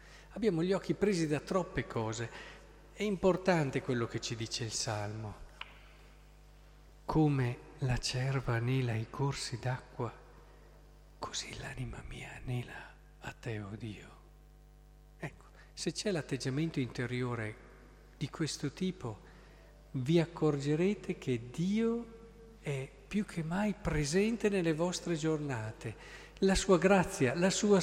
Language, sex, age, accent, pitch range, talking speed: Italian, male, 50-69, native, 125-180 Hz, 120 wpm